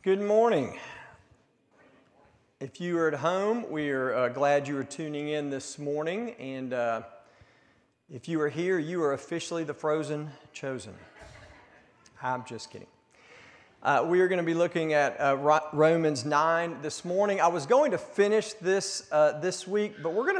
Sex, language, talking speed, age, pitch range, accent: male, English, 170 wpm, 50-69, 145-185 Hz, American